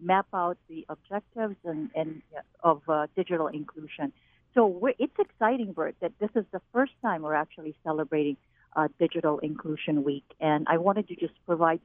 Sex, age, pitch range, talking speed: female, 50-69, 160-215 Hz, 170 wpm